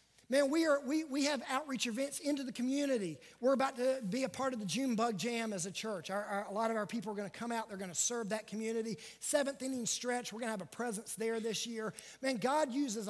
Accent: American